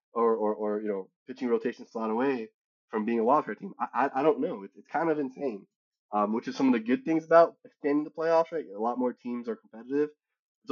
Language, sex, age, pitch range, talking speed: English, male, 20-39, 110-140 Hz, 245 wpm